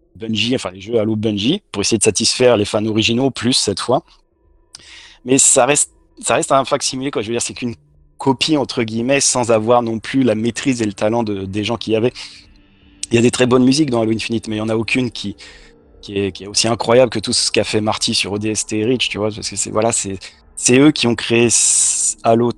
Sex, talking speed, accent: male, 245 wpm, French